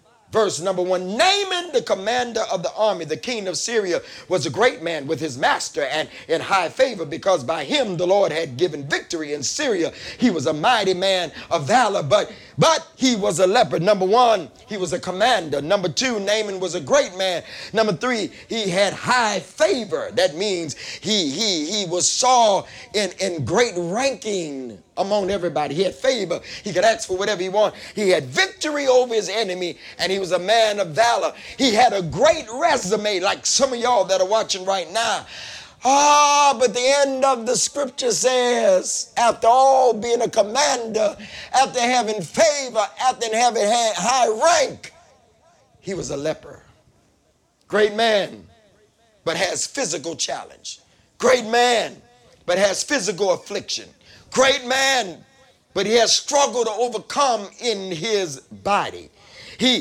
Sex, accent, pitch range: male, American, 185-255 Hz